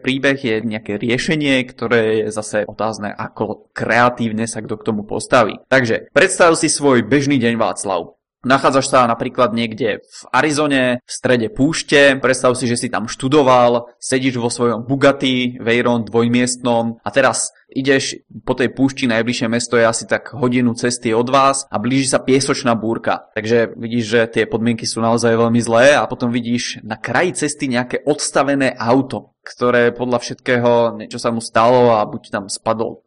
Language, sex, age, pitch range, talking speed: Czech, male, 20-39, 115-135 Hz, 165 wpm